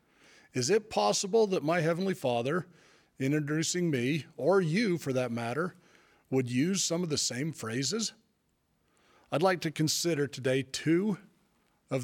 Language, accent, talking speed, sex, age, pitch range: English, American, 145 wpm, male, 40-59, 120-155 Hz